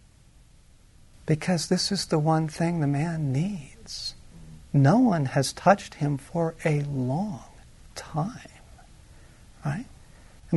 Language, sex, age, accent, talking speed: English, male, 40-59, American, 115 wpm